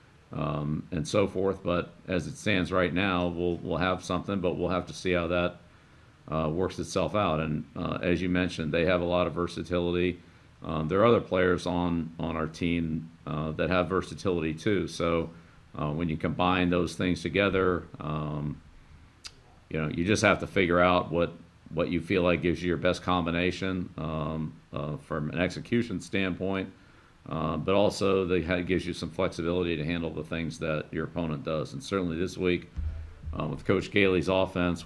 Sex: male